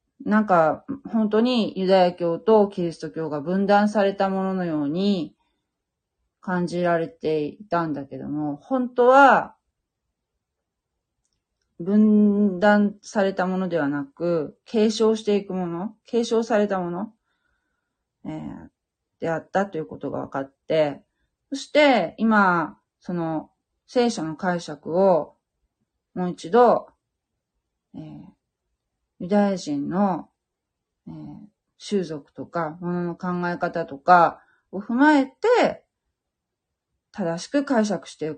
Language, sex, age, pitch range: Japanese, female, 30-49, 165-220 Hz